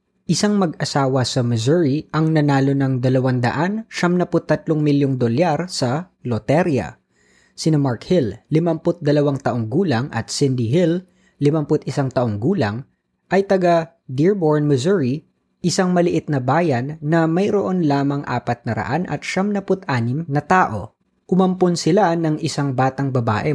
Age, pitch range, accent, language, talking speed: 20-39, 125-165 Hz, native, Filipino, 125 wpm